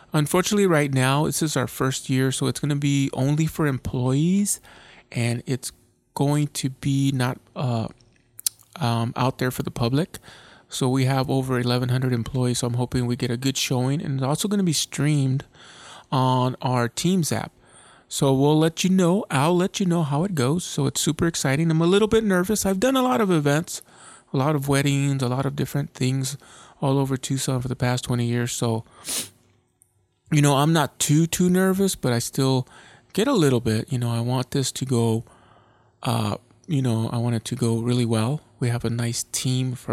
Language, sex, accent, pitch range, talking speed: English, male, American, 120-145 Hz, 205 wpm